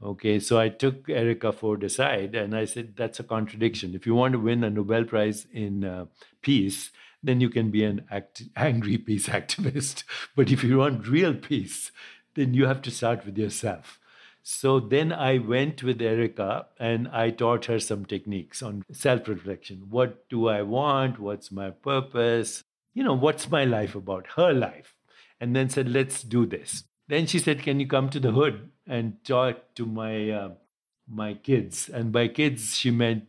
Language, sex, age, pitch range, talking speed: English, male, 60-79, 110-130 Hz, 185 wpm